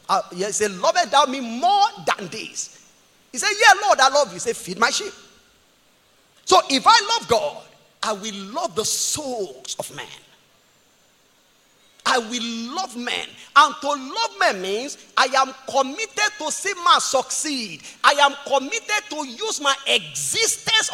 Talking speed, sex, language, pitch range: 165 wpm, male, English, 290-415 Hz